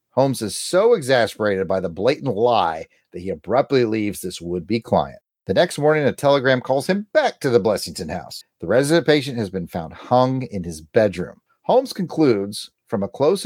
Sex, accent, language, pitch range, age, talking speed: male, American, English, 100-160 Hz, 40-59, 185 wpm